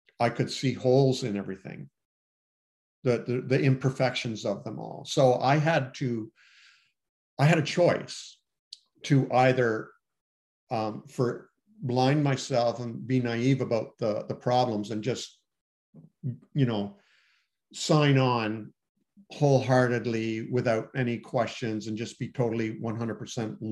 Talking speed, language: 125 wpm, English